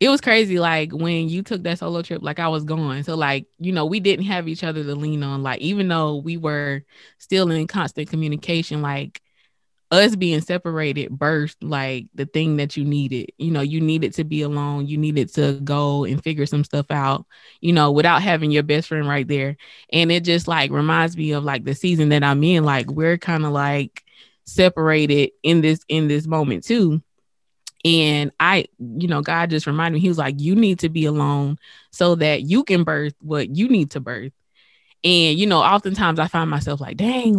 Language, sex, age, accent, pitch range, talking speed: English, female, 20-39, American, 145-175 Hz, 210 wpm